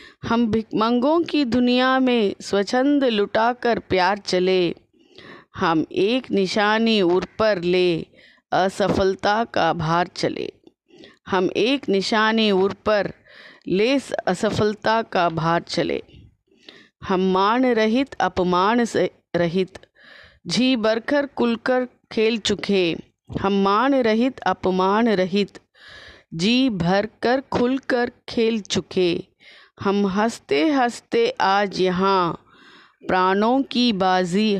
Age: 30-49